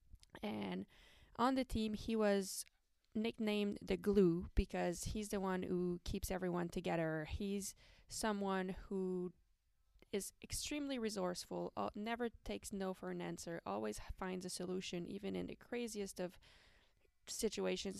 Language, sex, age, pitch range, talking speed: French, female, 20-39, 180-220 Hz, 135 wpm